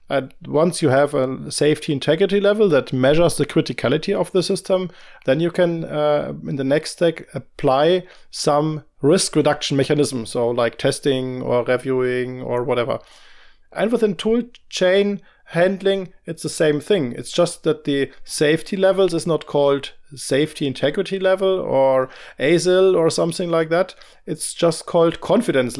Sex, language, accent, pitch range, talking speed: male, English, German, 135-175 Hz, 155 wpm